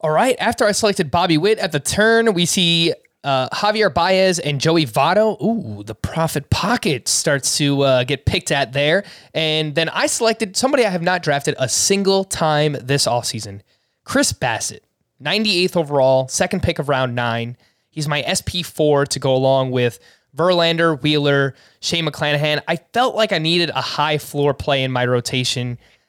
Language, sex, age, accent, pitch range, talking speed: English, male, 20-39, American, 130-175 Hz, 175 wpm